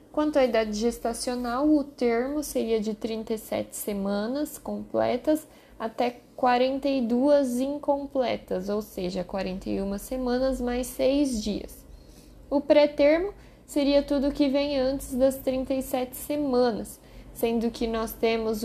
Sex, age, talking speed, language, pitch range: female, 10-29, 115 wpm, Portuguese, 205-270 Hz